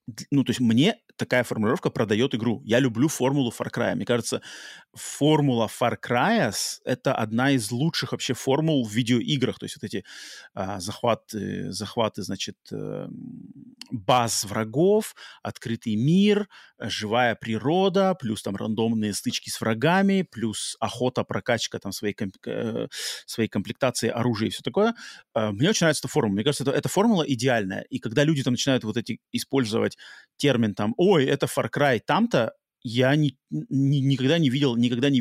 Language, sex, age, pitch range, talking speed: Russian, male, 30-49, 115-145 Hz, 155 wpm